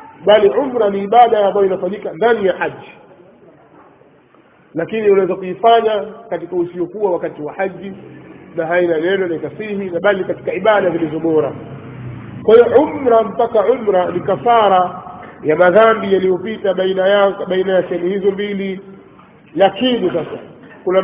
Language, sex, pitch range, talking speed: Swahili, male, 180-220 Hz, 135 wpm